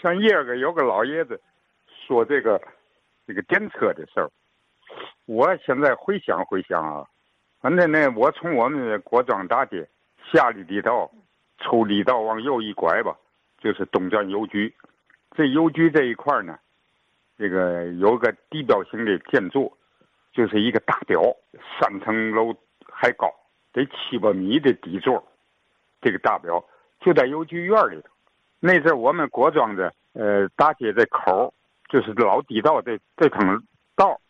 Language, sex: Chinese, male